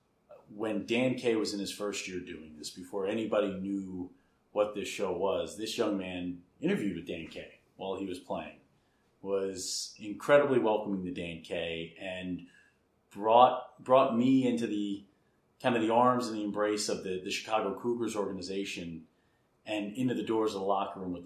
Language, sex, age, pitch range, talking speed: English, male, 30-49, 95-110 Hz, 175 wpm